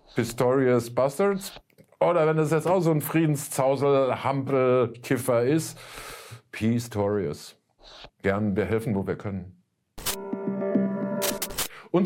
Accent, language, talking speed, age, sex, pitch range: German, German, 95 wpm, 50-69, male, 100-140 Hz